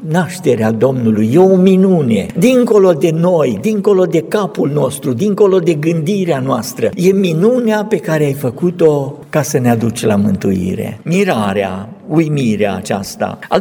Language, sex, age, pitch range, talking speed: Romanian, male, 60-79, 125-205 Hz, 140 wpm